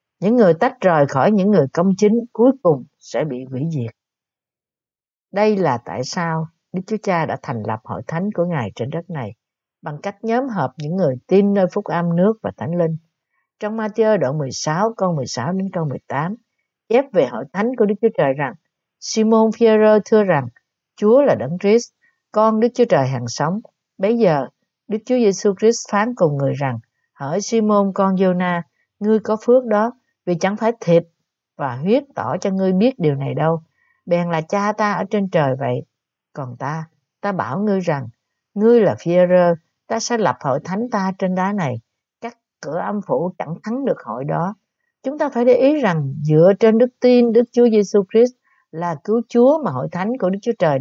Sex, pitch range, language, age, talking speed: female, 155-220 Hz, Vietnamese, 60-79, 200 wpm